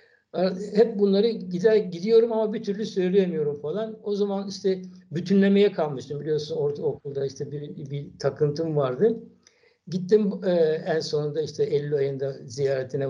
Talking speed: 135 wpm